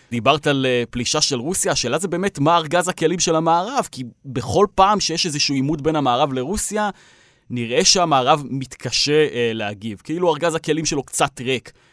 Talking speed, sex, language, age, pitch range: 165 wpm, male, Hebrew, 30-49, 125-190 Hz